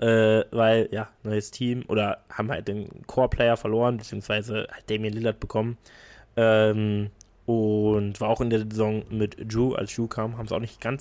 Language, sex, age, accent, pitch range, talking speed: German, male, 20-39, German, 105-130 Hz, 180 wpm